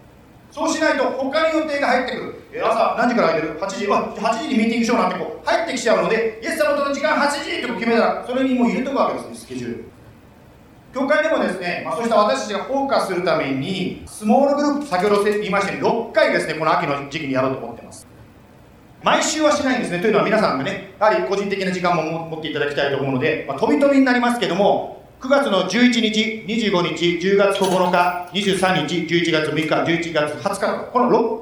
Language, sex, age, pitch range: Japanese, male, 40-59, 170-260 Hz